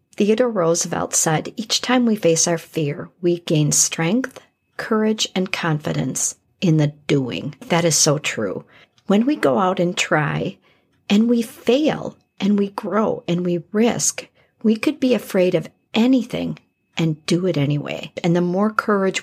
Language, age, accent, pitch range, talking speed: English, 50-69, American, 165-220 Hz, 160 wpm